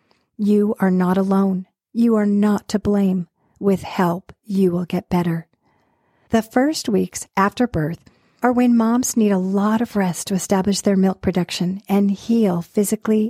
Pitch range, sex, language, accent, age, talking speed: 180-215 Hz, female, English, American, 50-69, 160 wpm